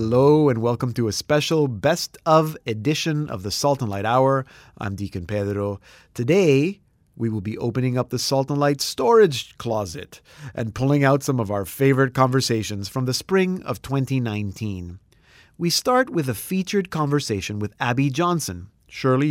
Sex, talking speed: male, 165 wpm